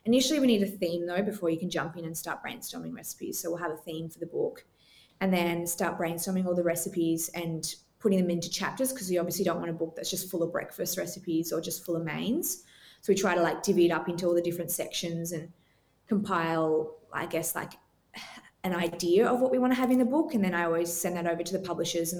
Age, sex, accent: 20-39, female, Australian